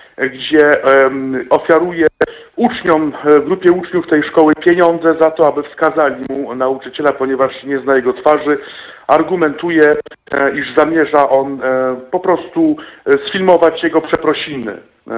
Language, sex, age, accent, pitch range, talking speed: Polish, male, 50-69, native, 135-175 Hz, 110 wpm